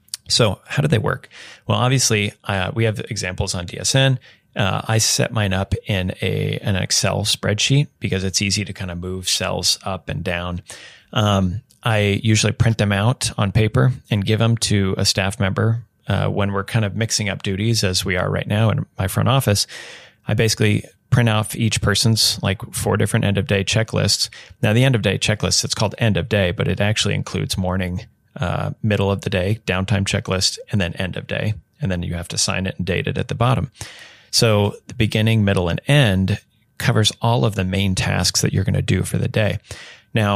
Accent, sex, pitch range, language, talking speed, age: American, male, 95-115 Hz, English, 200 wpm, 30-49